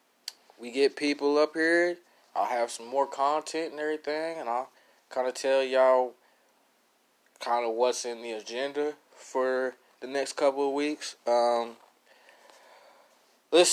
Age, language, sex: 20-39, English, male